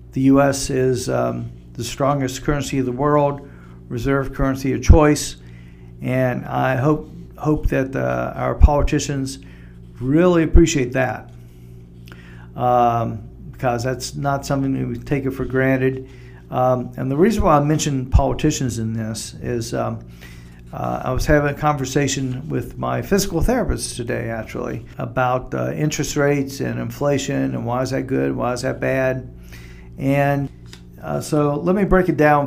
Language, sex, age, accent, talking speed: English, male, 50-69, American, 155 wpm